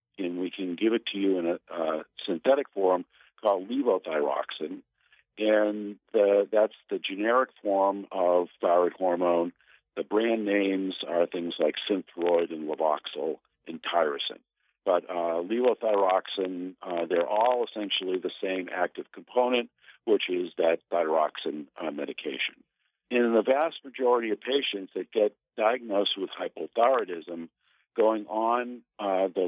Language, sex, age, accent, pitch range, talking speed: English, male, 50-69, American, 90-110 Hz, 135 wpm